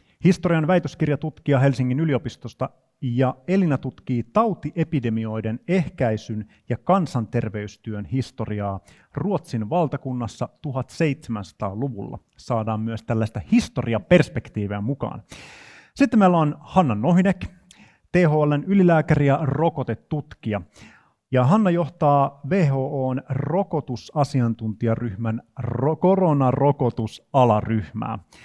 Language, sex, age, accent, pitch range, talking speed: Finnish, male, 30-49, native, 115-155 Hz, 75 wpm